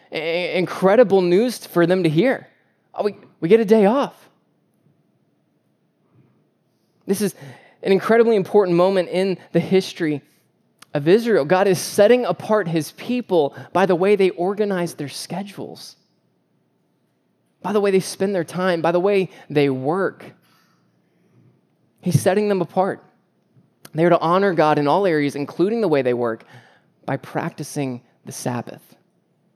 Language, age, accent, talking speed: English, 20-39, American, 140 wpm